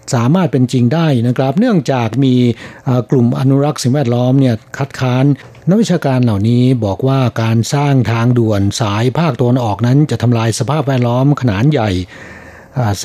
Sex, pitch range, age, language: male, 115-145 Hz, 60-79, Thai